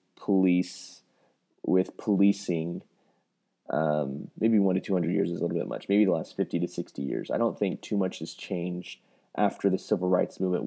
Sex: male